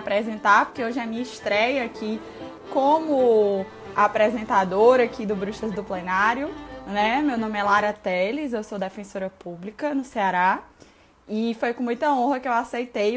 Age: 20-39